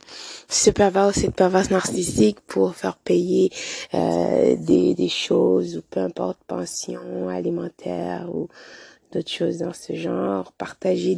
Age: 20-39